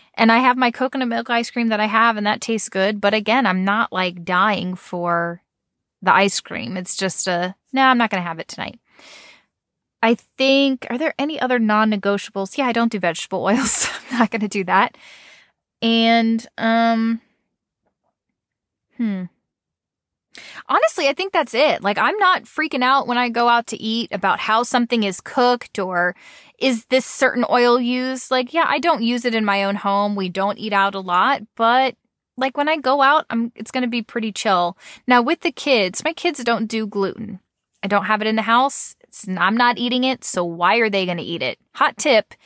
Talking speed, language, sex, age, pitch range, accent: 200 wpm, English, female, 20-39, 205-260 Hz, American